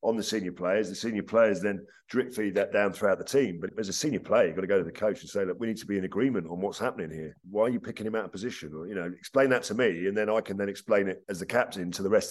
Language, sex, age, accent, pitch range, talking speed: English, male, 50-69, British, 95-115 Hz, 330 wpm